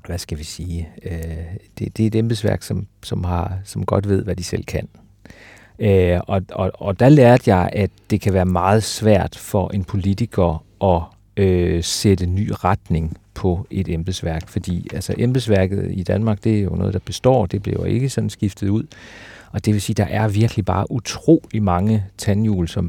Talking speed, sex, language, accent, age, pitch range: 195 wpm, male, Danish, native, 40-59, 95-110 Hz